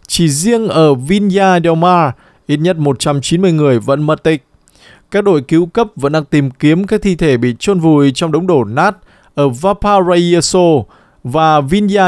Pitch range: 140-185 Hz